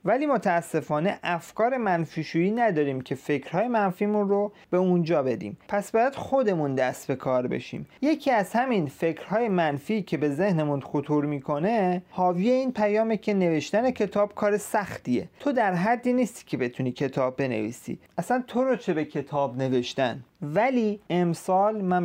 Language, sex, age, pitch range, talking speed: Persian, male, 30-49, 150-210 Hz, 150 wpm